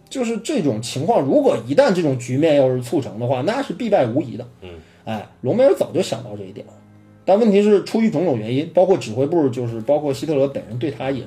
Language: Chinese